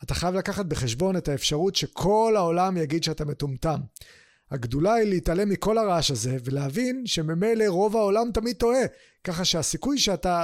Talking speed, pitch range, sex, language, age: 150 wpm, 155-220 Hz, male, Hebrew, 30-49